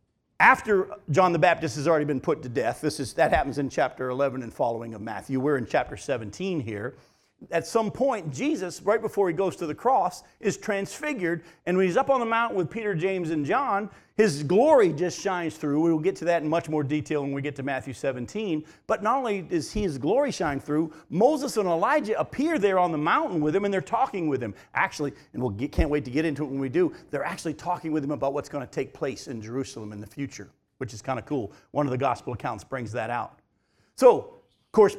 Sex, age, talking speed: male, 50-69, 235 wpm